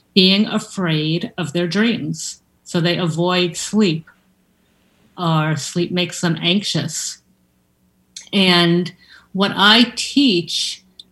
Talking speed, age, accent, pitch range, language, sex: 95 wpm, 50-69, American, 165-200 Hz, English, female